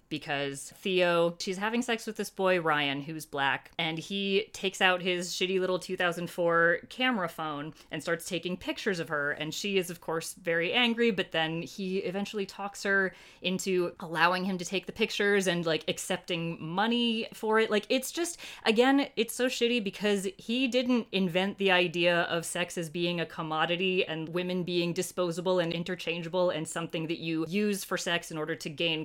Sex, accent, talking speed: female, American, 185 wpm